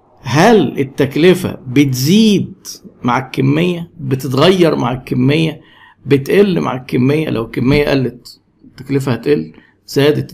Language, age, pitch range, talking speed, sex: Arabic, 50-69, 130-175 Hz, 100 wpm, male